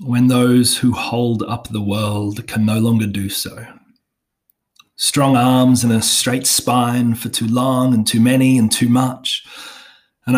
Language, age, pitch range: English, 30-49, 110-125 Hz